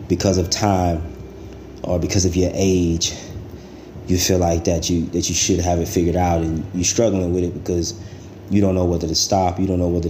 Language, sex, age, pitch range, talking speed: English, male, 20-39, 85-95 Hz, 215 wpm